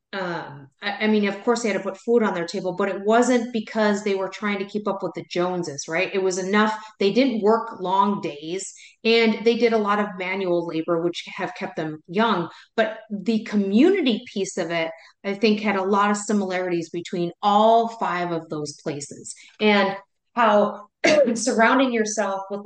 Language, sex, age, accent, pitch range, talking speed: English, female, 30-49, American, 180-220 Hz, 190 wpm